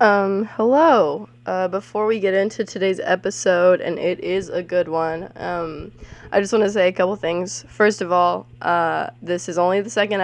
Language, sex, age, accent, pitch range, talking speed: English, female, 20-39, American, 165-205 Hz, 195 wpm